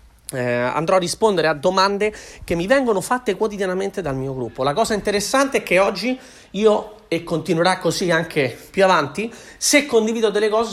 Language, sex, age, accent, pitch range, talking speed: Italian, male, 40-59, native, 165-205 Hz, 175 wpm